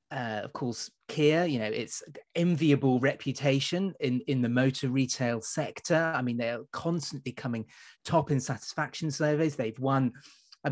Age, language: 30-49, English